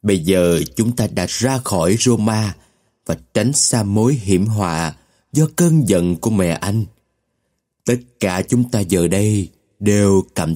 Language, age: Vietnamese, 20-39